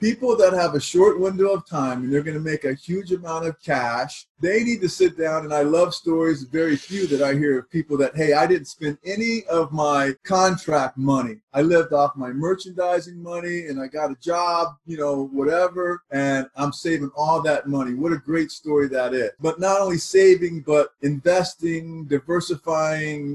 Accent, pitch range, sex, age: American, 145-175 Hz, male, 30-49